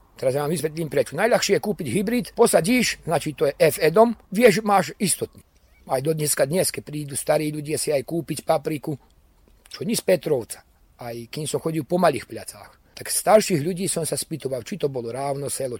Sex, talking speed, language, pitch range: male, 190 wpm, Slovak, 145-200 Hz